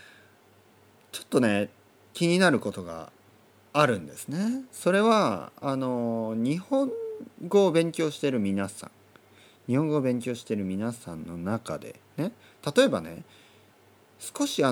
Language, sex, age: Japanese, male, 40-59